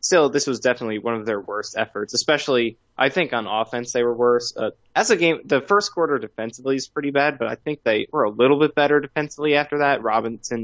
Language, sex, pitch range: English, male, 110-135 Hz